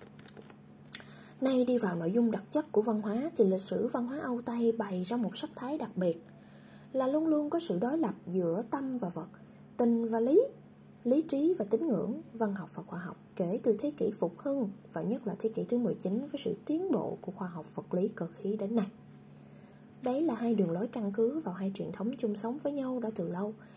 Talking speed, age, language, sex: 230 wpm, 20-39, Vietnamese, female